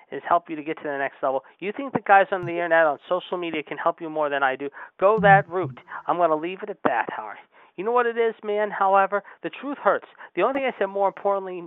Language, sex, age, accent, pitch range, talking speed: English, male, 40-59, American, 145-195 Hz, 280 wpm